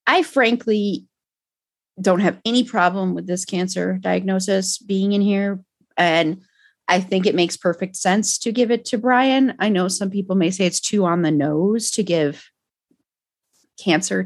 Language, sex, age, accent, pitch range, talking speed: English, female, 30-49, American, 165-220 Hz, 165 wpm